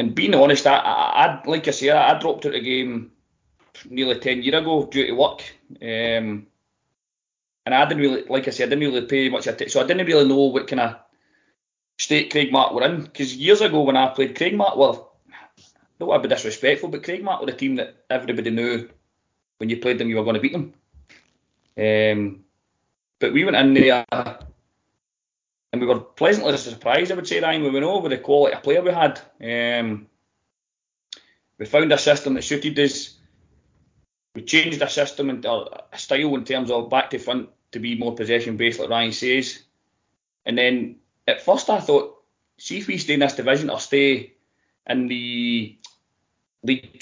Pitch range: 120-150 Hz